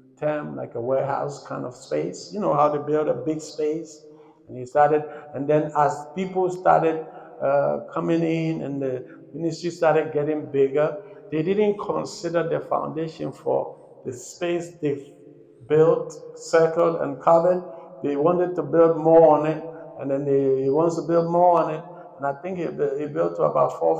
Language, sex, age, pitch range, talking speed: English, male, 60-79, 150-175 Hz, 175 wpm